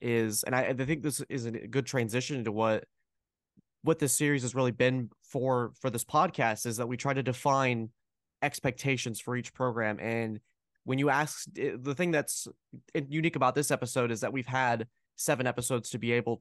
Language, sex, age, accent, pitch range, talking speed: English, male, 20-39, American, 115-140 Hz, 190 wpm